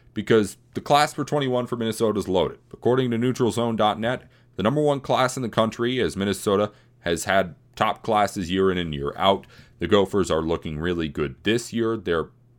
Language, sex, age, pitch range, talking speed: English, male, 30-49, 95-120 Hz, 185 wpm